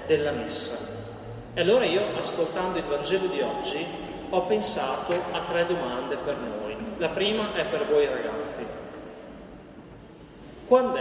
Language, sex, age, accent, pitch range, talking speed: Italian, male, 40-59, native, 165-200 Hz, 130 wpm